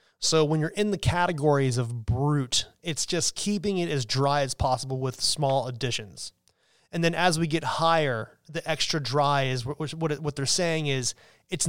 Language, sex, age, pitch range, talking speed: English, male, 30-49, 130-170 Hz, 175 wpm